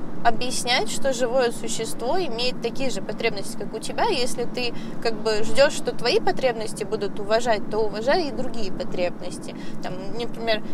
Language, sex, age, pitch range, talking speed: Russian, female, 20-39, 210-255 Hz, 155 wpm